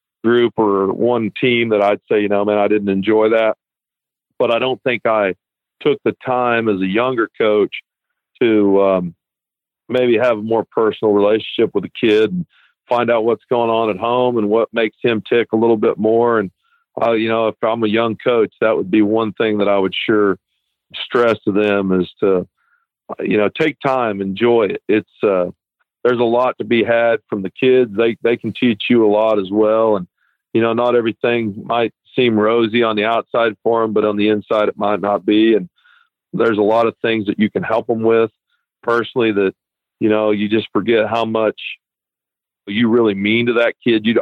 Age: 50-69